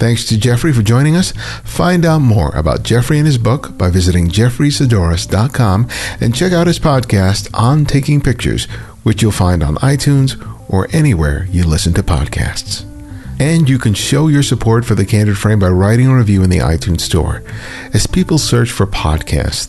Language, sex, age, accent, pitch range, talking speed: English, male, 50-69, American, 95-125 Hz, 180 wpm